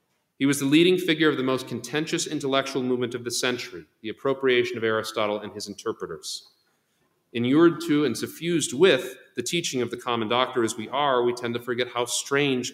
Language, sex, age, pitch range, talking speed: English, male, 40-59, 110-140 Hz, 195 wpm